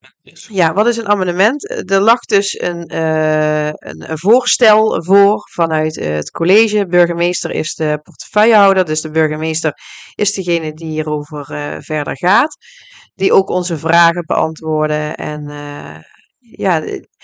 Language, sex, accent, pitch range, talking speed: Dutch, female, Dutch, 160-205 Hz, 130 wpm